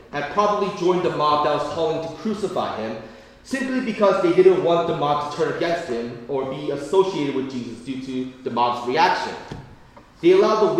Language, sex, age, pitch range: Korean, male, 30-49, 140-195 Hz